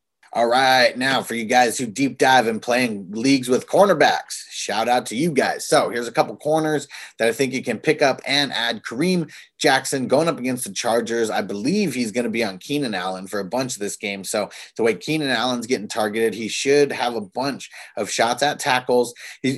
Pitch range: 115-135 Hz